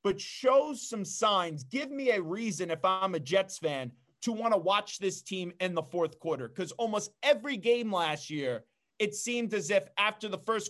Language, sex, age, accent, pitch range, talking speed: English, male, 30-49, American, 170-215 Hz, 200 wpm